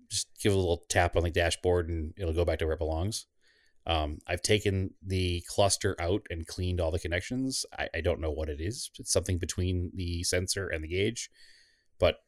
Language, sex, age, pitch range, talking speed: English, male, 30-49, 85-100 Hz, 210 wpm